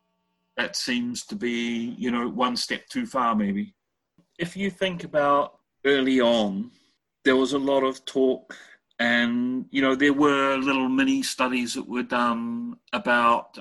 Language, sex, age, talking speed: English, male, 40-59, 155 wpm